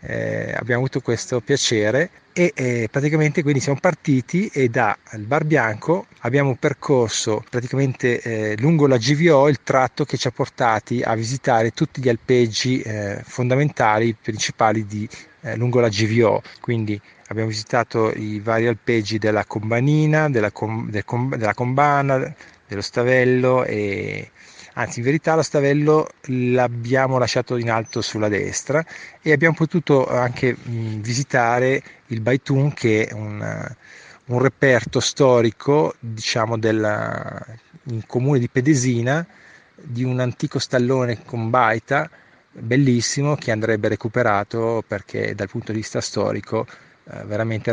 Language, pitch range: Italian, 110-140 Hz